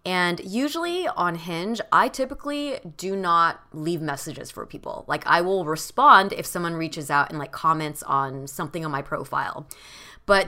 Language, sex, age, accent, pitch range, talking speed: English, female, 20-39, American, 155-205 Hz, 165 wpm